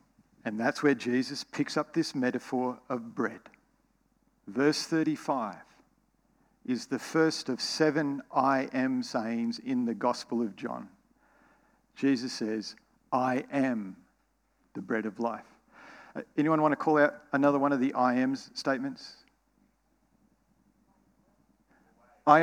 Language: English